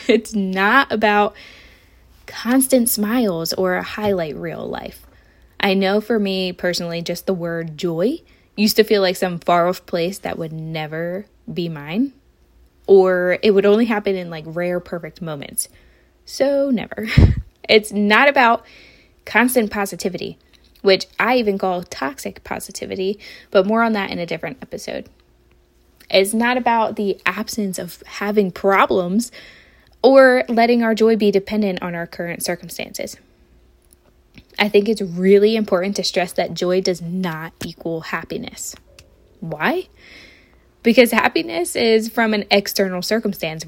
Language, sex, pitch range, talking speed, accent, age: English, female, 180-225 Hz, 140 wpm, American, 10-29